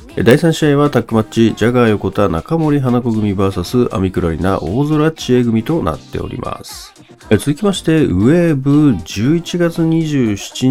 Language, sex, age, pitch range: Japanese, male, 40-59, 105-140 Hz